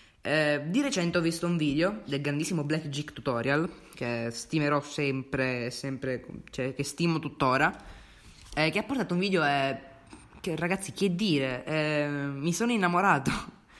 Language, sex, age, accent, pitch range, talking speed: Italian, female, 20-39, native, 140-175 Hz, 150 wpm